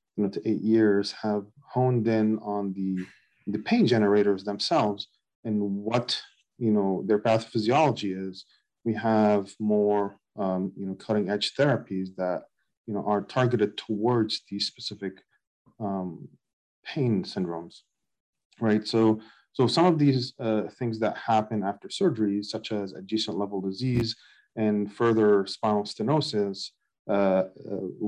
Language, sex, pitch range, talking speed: English, male, 100-115 Hz, 135 wpm